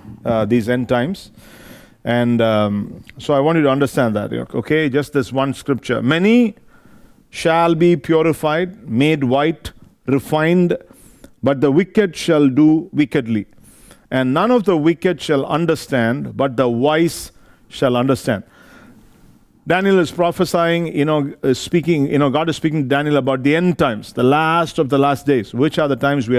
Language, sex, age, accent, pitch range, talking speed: English, male, 50-69, Indian, 120-155 Hz, 165 wpm